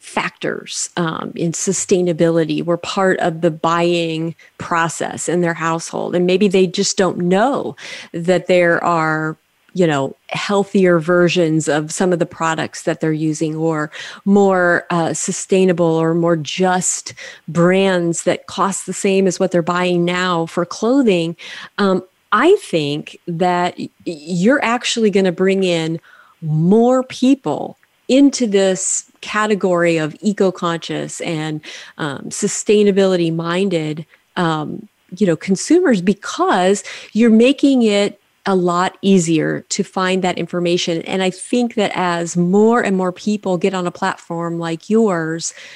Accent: American